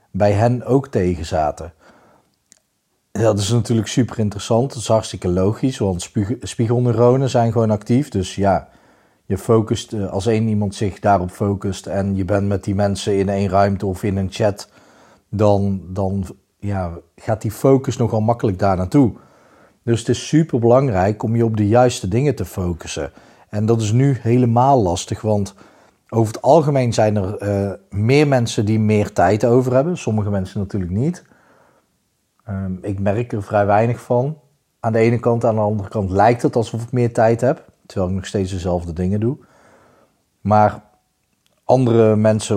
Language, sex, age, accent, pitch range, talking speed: Dutch, male, 40-59, Dutch, 100-120 Hz, 170 wpm